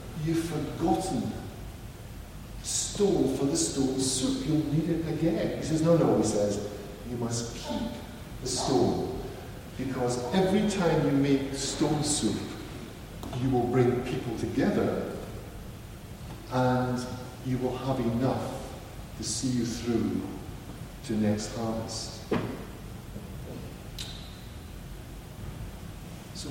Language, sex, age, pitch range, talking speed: English, male, 50-69, 115-140 Hz, 105 wpm